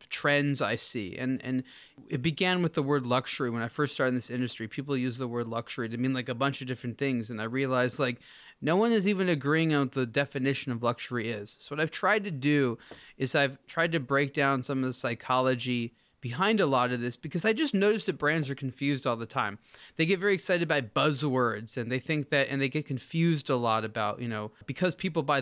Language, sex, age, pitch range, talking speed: English, male, 20-39, 125-165 Hz, 240 wpm